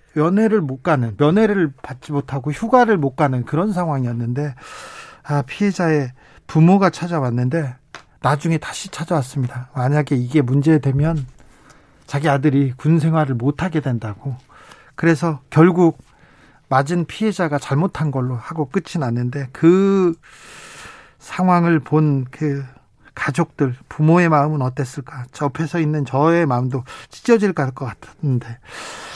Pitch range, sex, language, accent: 130-170 Hz, male, Korean, native